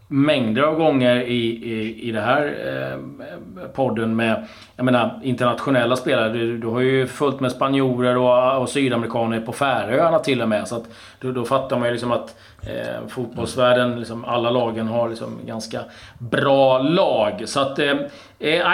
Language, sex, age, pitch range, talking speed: Swedish, male, 30-49, 120-145 Hz, 165 wpm